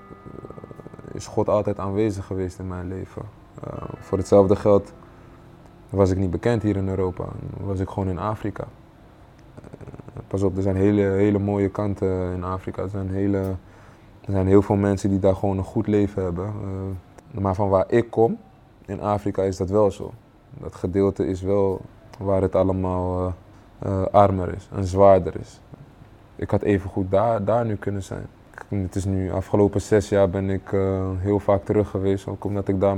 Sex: male